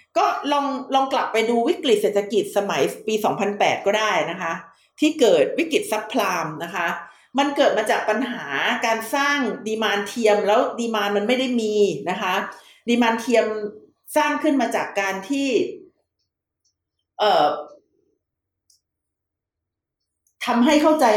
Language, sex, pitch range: Thai, female, 205-270 Hz